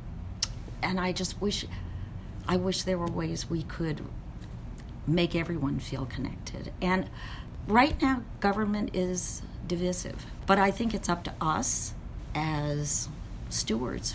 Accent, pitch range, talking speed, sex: American, 130-170 Hz, 125 wpm, female